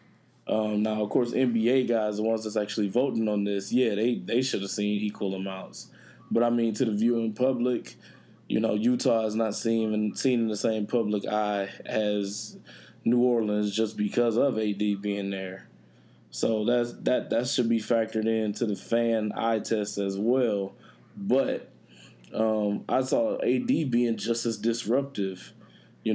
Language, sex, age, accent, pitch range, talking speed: English, male, 20-39, American, 105-120 Hz, 170 wpm